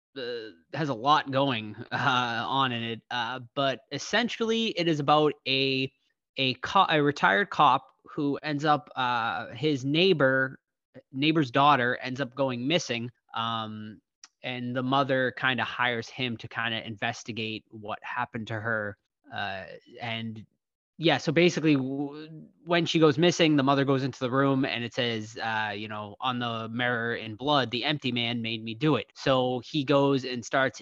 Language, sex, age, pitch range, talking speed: English, male, 20-39, 120-150 Hz, 170 wpm